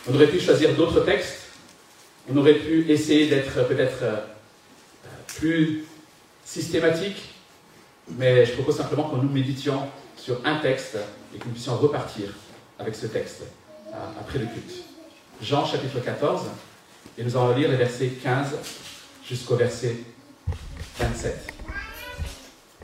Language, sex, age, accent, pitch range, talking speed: French, male, 50-69, French, 120-165 Hz, 125 wpm